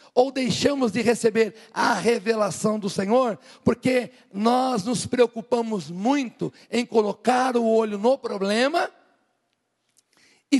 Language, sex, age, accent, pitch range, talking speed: Portuguese, male, 50-69, Brazilian, 160-240 Hz, 115 wpm